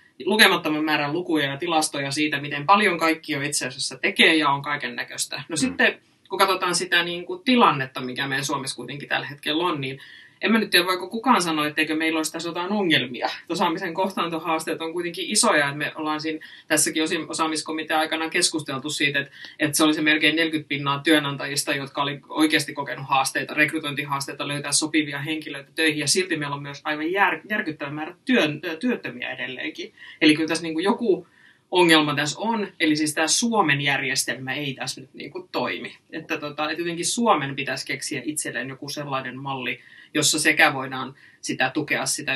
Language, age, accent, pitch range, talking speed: Finnish, 20-39, native, 140-170 Hz, 175 wpm